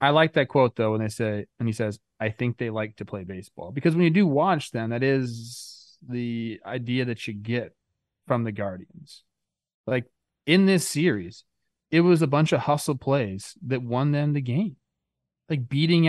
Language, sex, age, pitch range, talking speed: English, male, 20-39, 115-145 Hz, 195 wpm